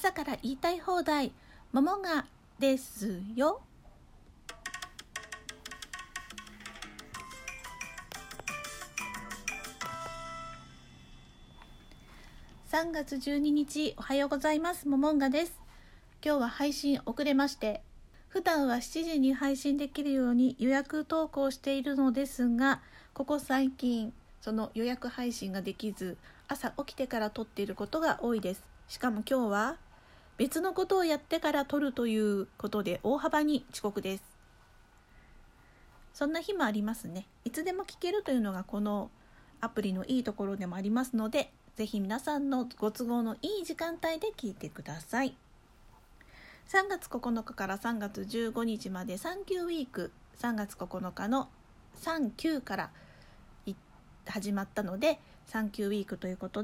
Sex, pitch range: female, 210-295 Hz